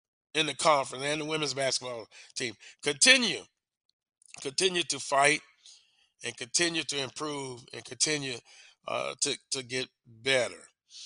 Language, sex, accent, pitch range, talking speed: English, male, American, 135-160 Hz, 125 wpm